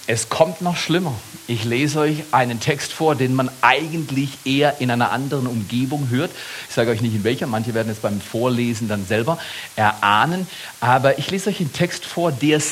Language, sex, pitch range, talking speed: German, male, 120-160 Hz, 195 wpm